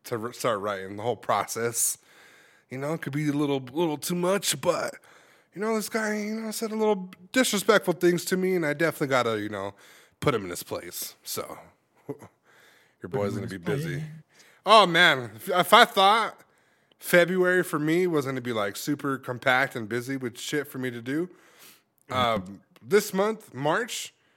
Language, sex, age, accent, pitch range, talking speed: English, male, 20-39, American, 125-195 Hz, 185 wpm